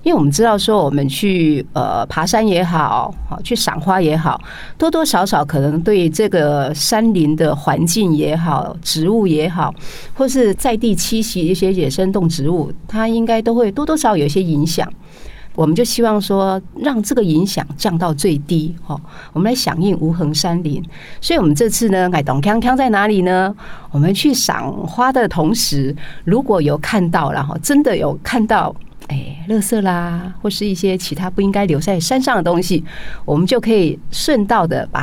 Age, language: 40-59, Chinese